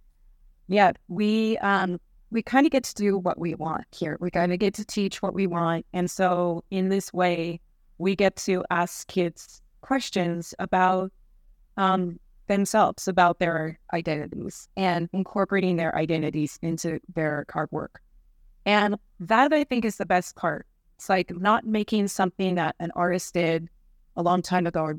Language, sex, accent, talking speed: English, female, American, 165 wpm